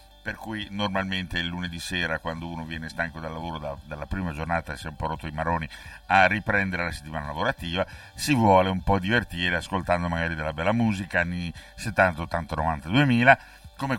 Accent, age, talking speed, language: native, 60-79, 190 wpm, Italian